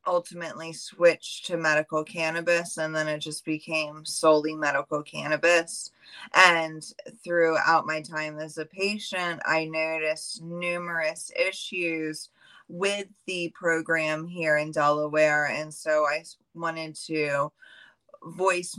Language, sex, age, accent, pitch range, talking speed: English, female, 20-39, American, 155-170 Hz, 115 wpm